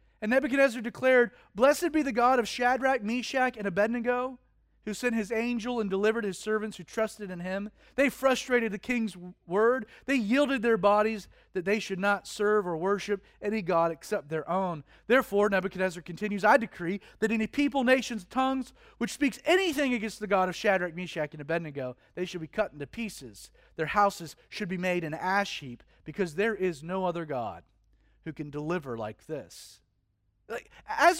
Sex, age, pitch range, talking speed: male, 40-59, 190-280 Hz, 175 wpm